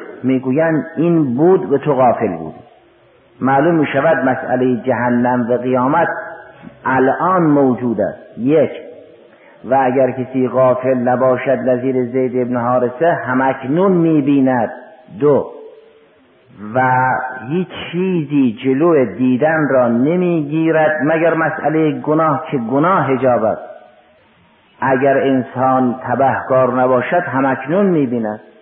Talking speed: 105 wpm